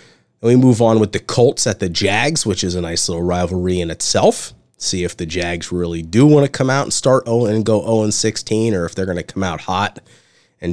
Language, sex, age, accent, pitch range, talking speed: English, male, 30-49, American, 90-115 Hz, 230 wpm